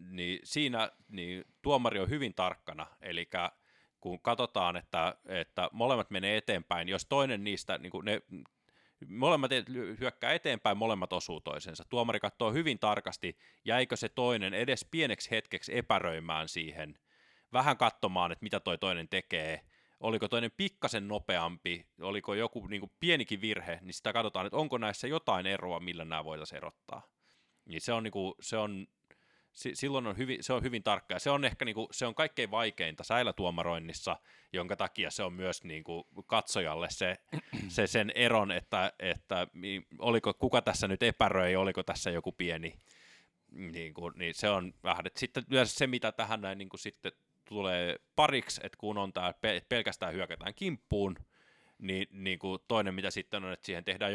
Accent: native